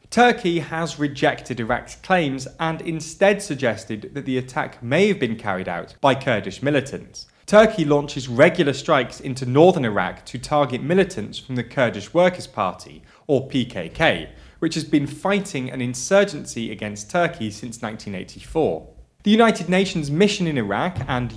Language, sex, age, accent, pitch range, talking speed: English, male, 30-49, British, 120-175 Hz, 150 wpm